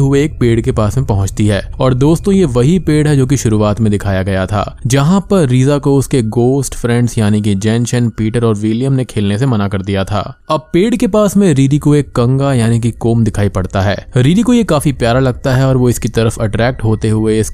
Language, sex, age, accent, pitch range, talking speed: Hindi, male, 20-39, native, 105-140 Hz, 235 wpm